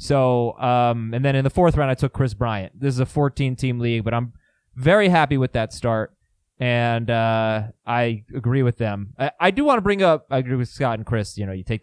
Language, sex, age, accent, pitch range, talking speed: English, male, 20-39, American, 115-160 Hz, 245 wpm